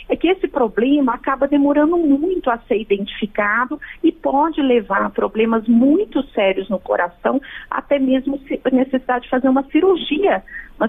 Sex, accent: female, Brazilian